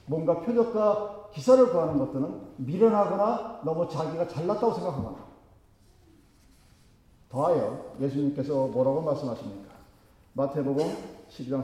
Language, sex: Korean, male